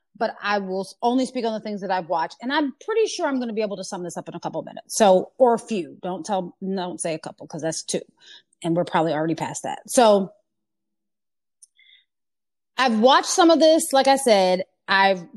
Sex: female